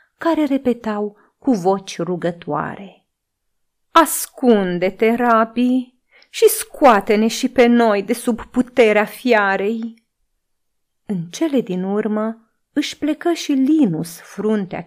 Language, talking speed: Romanian, 100 wpm